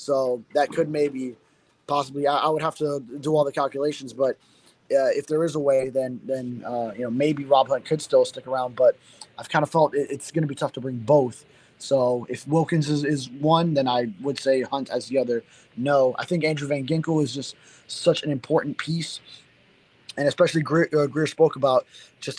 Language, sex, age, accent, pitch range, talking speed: English, male, 20-39, American, 130-155 Hz, 215 wpm